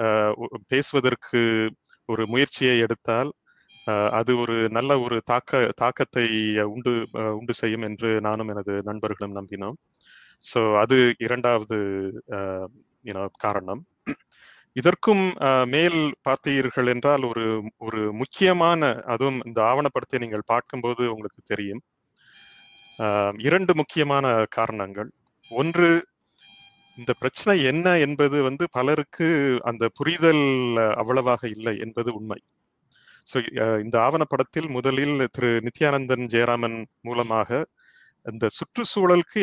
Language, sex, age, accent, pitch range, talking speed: Tamil, male, 30-49, native, 110-145 Hz, 95 wpm